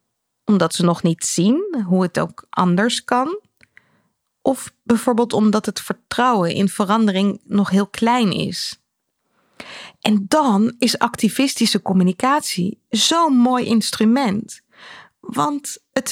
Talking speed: 115 wpm